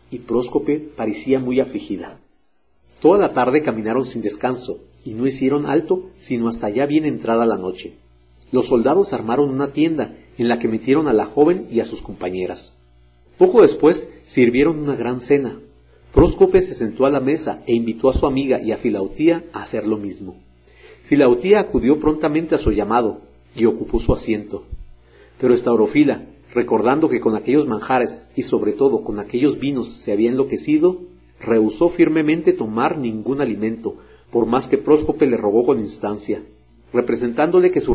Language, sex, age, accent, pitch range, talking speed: Spanish, male, 50-69, Mexican, 105-150 Hz, 165 wpm